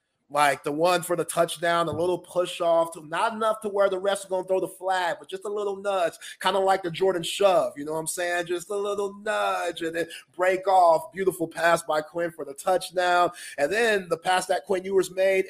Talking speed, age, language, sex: 230 wpm, 30-49, English, male